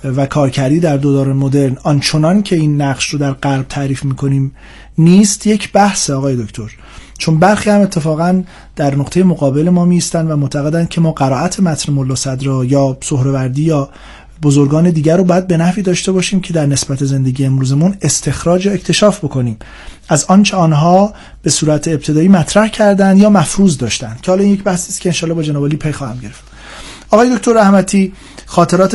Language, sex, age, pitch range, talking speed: Persian, male, 40-59, 145-175 Hz, 170 wpm